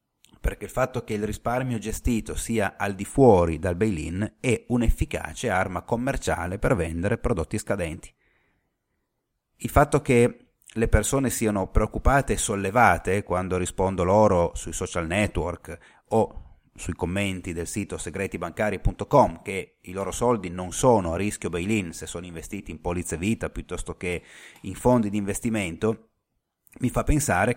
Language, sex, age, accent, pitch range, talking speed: Italian, male, 30-49, native, 90-115 Hz, 145 wpm